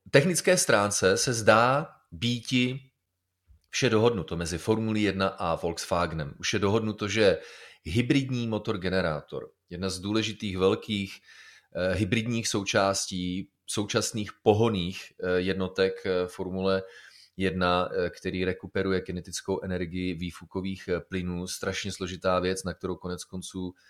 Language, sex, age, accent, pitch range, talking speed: Czech, male, 30-49, native, 90-110 Hz, 105 wpm